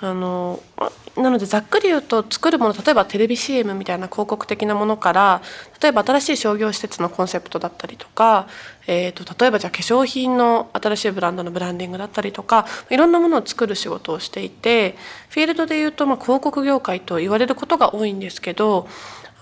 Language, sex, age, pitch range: Japanese, female, 20-39, 185-245 Hz